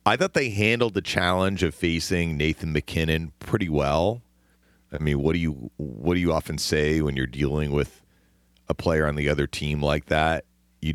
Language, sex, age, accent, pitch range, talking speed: English, male, 40-59, American, 70-105 Hz, 190 wpm